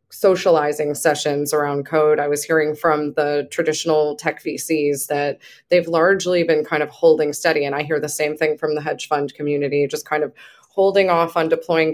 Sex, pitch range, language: female, 150-190 Hz, English